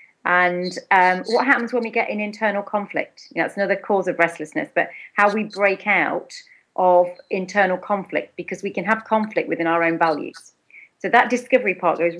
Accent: British